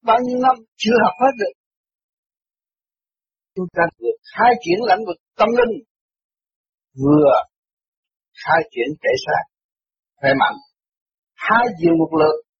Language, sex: Vietnamese, male